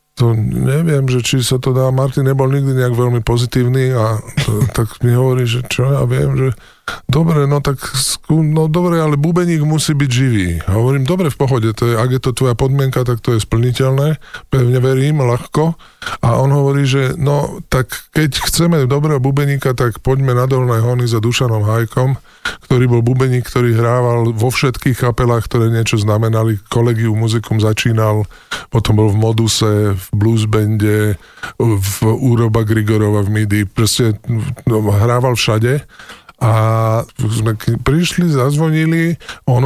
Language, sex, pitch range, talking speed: Slovak, male, 115-140 Hz, 155 wpm